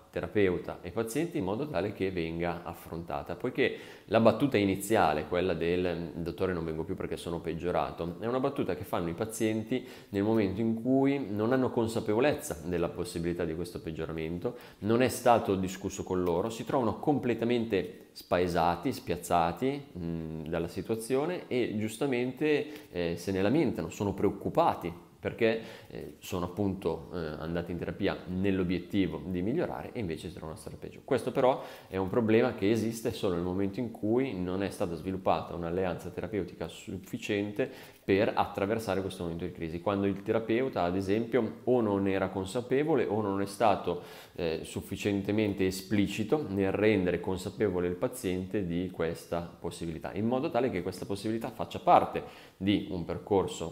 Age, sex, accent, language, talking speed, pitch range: 30-49, male, native, Italian, 155 wpm, 90-115 Hz